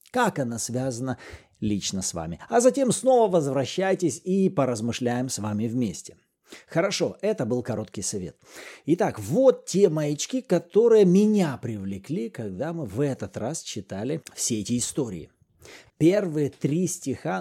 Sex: male